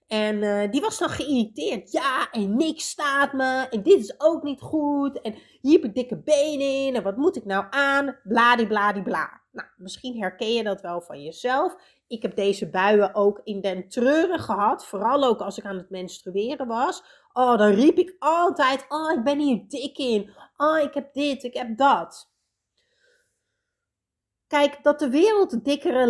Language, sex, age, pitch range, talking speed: Dutch, female, 30-49, 210-290 Hz, 180 wpm